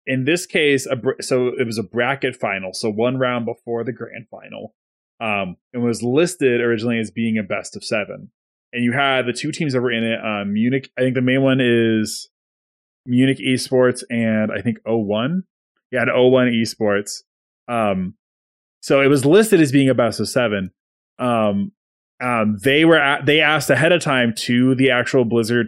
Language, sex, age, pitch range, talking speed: English, male, 20-39, 115-135 Hz, 195 wpm